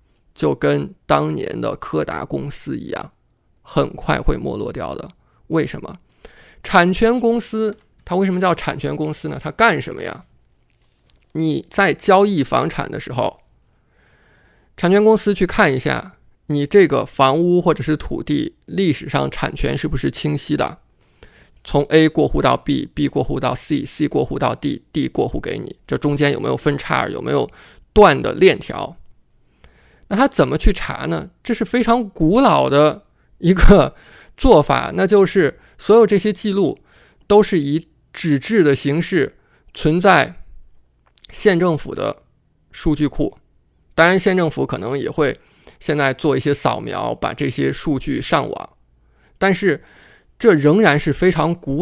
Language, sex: Chinese, male